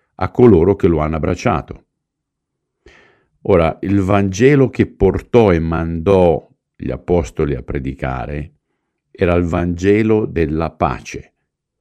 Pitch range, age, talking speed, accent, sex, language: 80-110 Hz, 50-69, 110 wpm, native, male, Italian